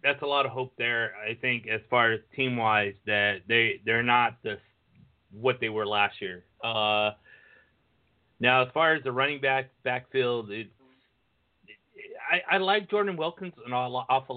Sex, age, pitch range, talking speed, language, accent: male, 30-49, 110-130 Hz, 165 wpm, English, American